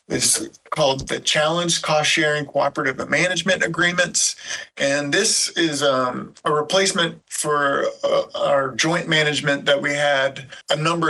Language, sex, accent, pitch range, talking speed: English, male, American, 140-165 Hz, 135 wpm